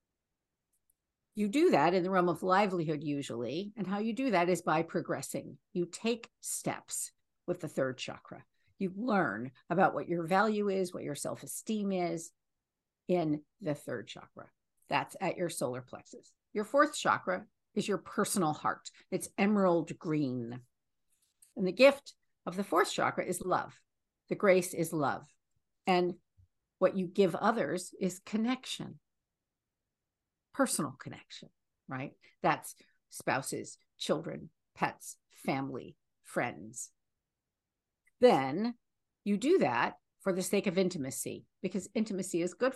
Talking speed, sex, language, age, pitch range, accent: 135 wpm, female, English, 50-69, 170-205 Hz, American